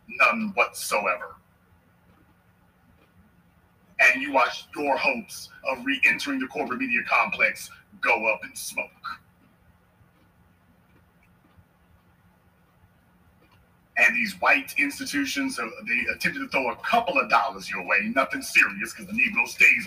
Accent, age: American, 40-59